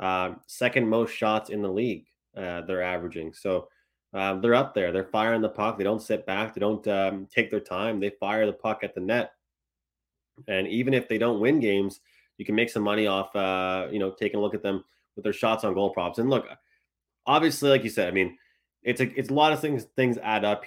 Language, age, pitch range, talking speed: English, 20-39, 95-110 Hz, 235 wpm